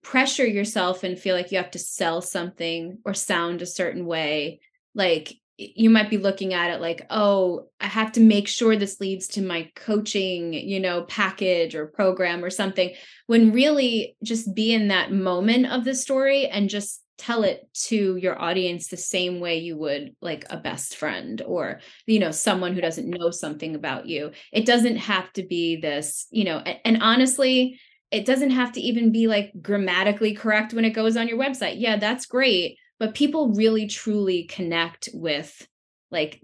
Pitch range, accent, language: 180-230 Hz, American, English